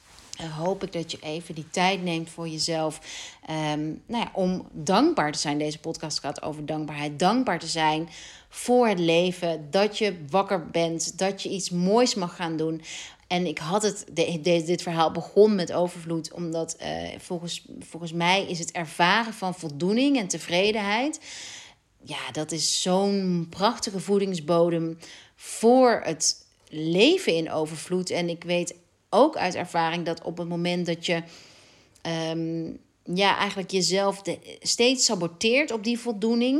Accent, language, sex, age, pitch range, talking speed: Dutch, Dutch, female, 40-59, 165-195 Hz, 155 wpm